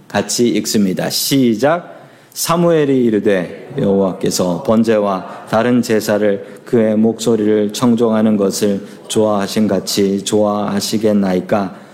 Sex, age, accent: male, 40-59, native